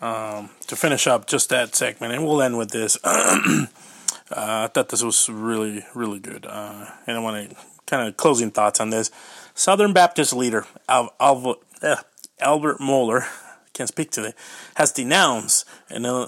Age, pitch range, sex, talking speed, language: 30-49, 115-170 Hz, male, 170 wpm, English